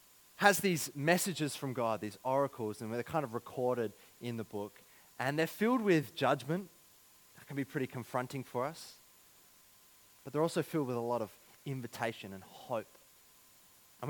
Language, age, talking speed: English, 20-39, 165 wpm